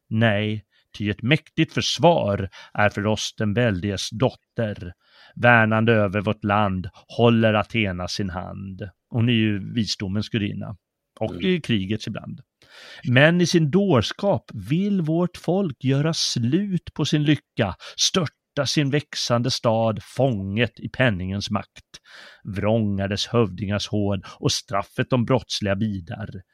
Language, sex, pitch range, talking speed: Swedish, male, 105-130 Hz, 130 wpm